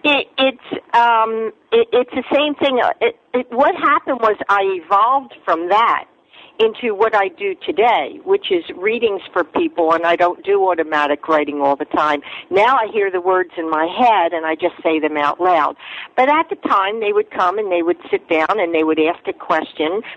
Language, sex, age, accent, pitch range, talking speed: English, female, 50-69, American, 170-275 Hz, 205 wpm